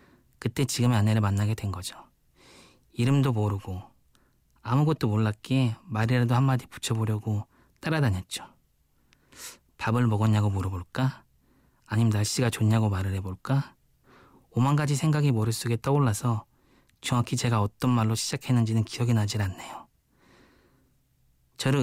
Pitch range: 110-130 Hz